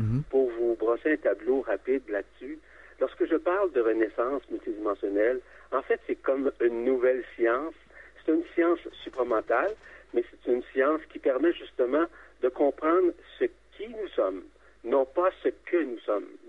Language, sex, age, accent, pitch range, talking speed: French, male, 50-69, French, 285-390 Hz, 155 wpm